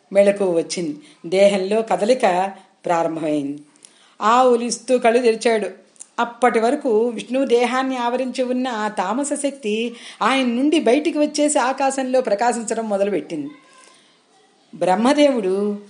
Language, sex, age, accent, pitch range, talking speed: Telugu, female, 40-59, native, 200-290 Hz, 95 wpm